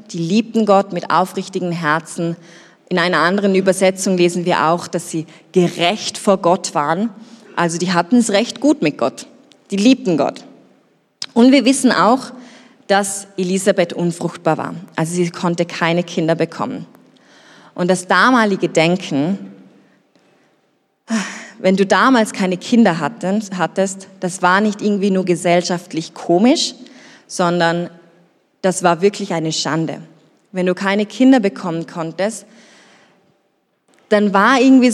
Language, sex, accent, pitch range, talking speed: German, female, German, 170-210 Hz, 130 wpm